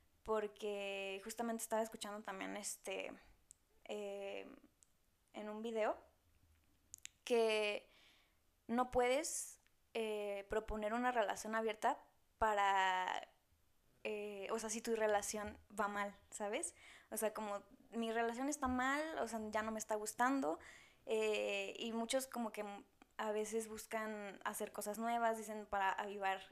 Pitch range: 200-230 Hz